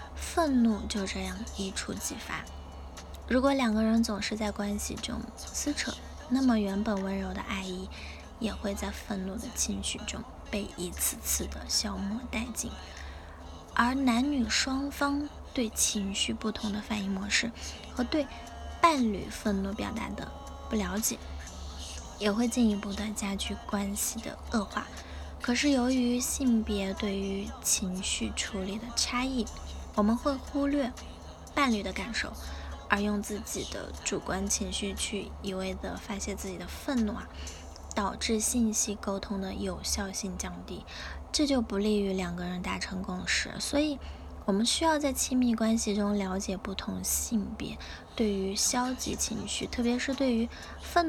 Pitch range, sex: 195-240 Hz, female